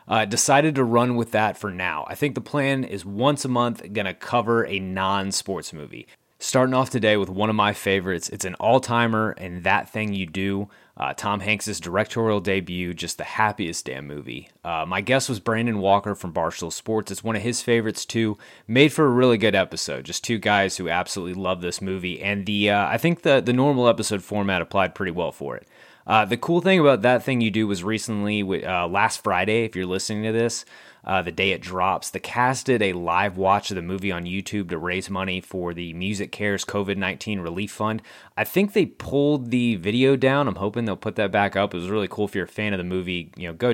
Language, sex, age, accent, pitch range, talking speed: English, male, 30-49, American, 95-120 Hz, 225 wpm